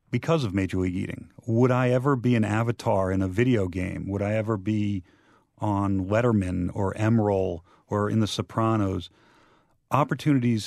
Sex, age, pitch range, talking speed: male, 40-59, 105-125 Hz, 155 wpm